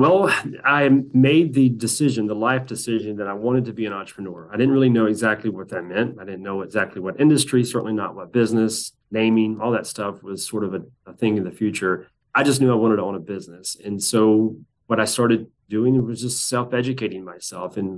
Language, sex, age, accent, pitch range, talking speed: English, male, 30-49, American, 100-120 Hz, 220 wpm